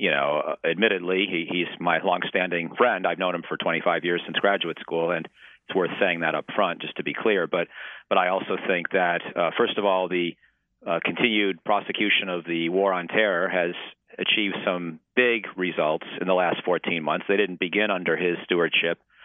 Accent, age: American, 40-59